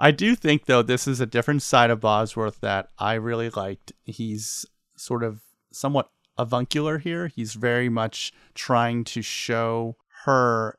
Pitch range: 105-130 Hz